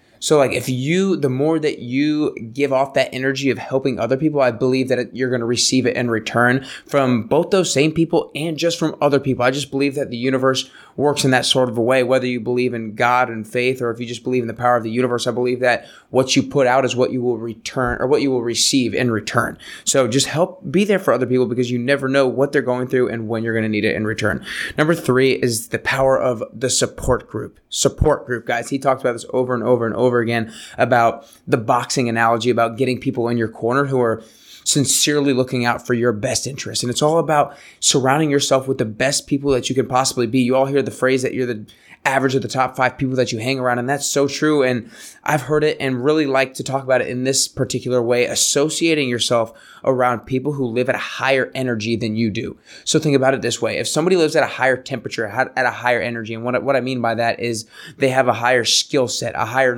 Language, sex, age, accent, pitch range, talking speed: English, male, 20-39, American, 120-135 Hz, 250 wpm